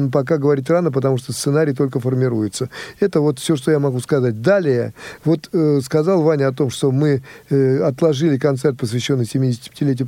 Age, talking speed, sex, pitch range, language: 50-69, 175 wpm, male, 135-170 Hz, Russian